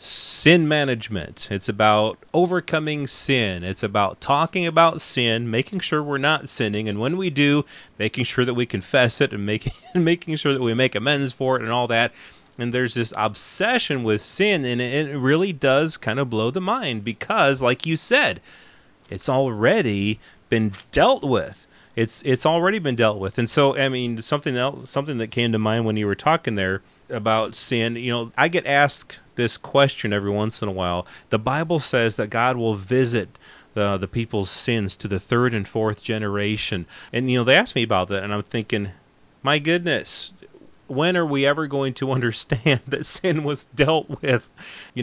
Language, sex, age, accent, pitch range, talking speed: English, male, 30-49, American, 110-140 Hz, 190 wpm